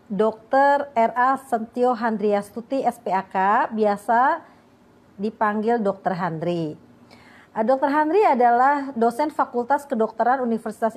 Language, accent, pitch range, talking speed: Indonesian, native, 210-260 Hz, 90 wpm